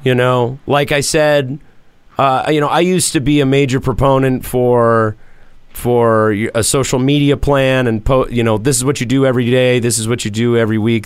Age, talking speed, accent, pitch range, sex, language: 40-59, 205 wpm, American, 115-140 Hz, male, English